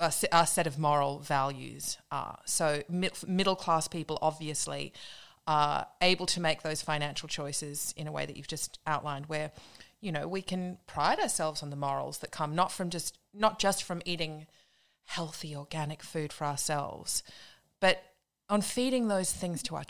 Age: 30-49